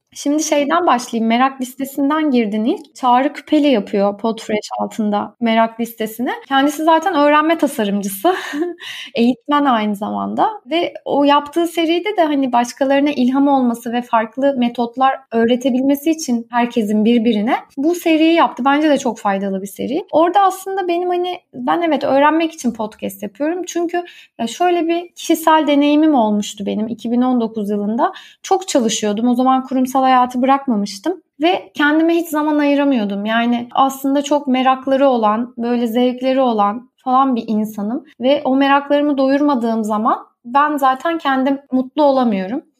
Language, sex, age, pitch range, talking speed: Turkish, female, 30-49, 235-300 Hz, 135 wpm